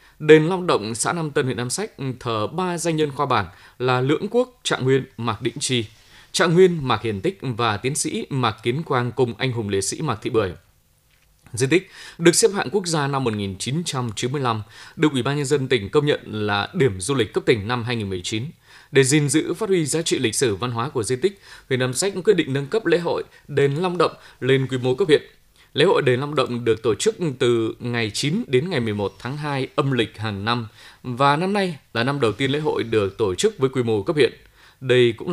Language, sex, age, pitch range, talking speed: Vietnamese, male, 20-39, 115-155 Hz, 235 wpm